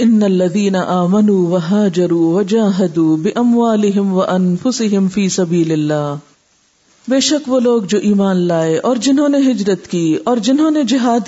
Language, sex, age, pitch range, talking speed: Urdu, female, 50-69, 170-210 Hz, 105 wpm